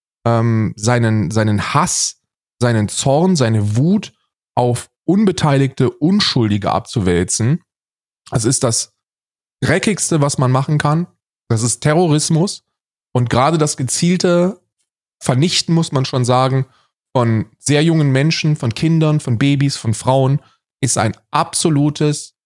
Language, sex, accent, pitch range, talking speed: German, male, German, 115-150 Hz, 120 wpm